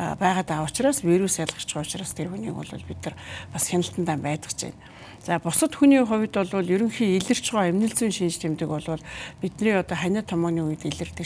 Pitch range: 155-185 Hz